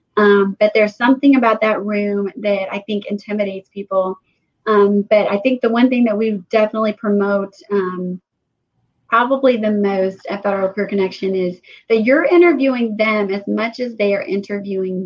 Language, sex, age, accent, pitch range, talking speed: English, female, 30-49, American, 200-230 Hz, 165 wpm